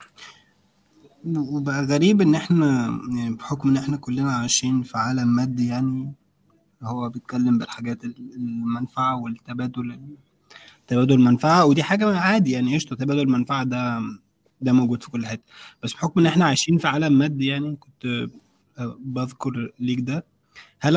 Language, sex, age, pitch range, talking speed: Arabic, male, 20-39, 120-150 Hz, 135 wpm